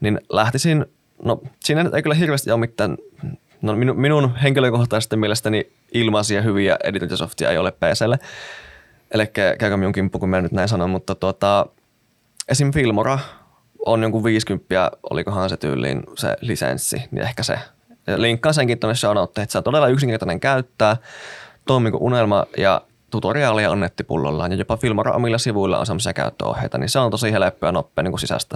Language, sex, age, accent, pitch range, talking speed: Finnish, male, 20-39, native, 100-125 Hz, 160 wpm